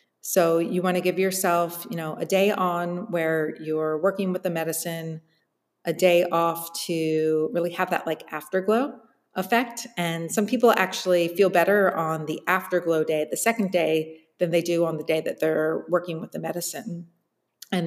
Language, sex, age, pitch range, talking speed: English, female, 40-59, 160-190 Hz, 180 wpm